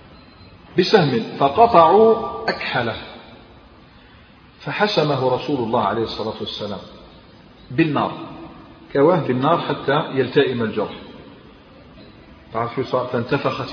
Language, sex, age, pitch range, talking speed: Arabic, male, 40-59, 125-170 Hz, 70 wpm